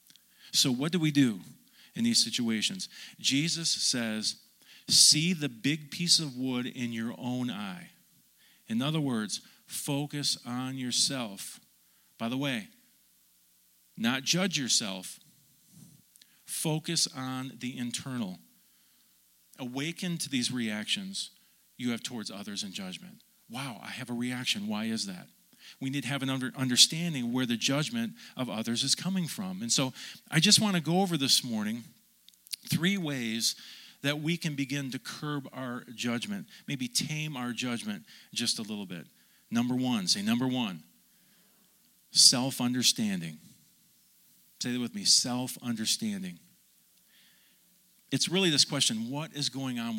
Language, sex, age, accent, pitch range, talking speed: English, male, 40-59, American, 125-195 Hz, 140 wpm